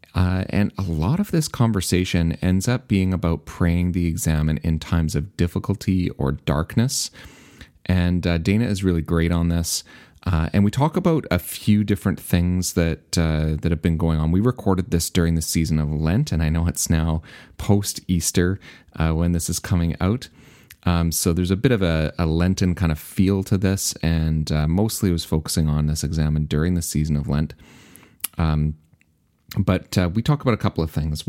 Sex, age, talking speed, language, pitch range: male, 30-49, 195 wpm, English, 80-95 Hz